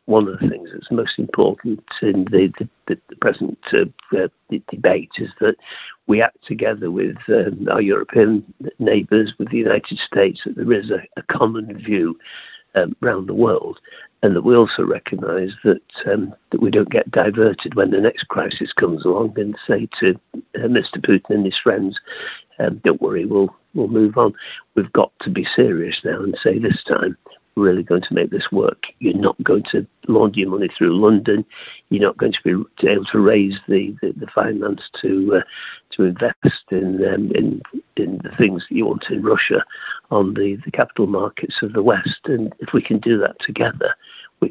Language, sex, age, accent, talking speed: English, male, 50-69, British, 195 wpm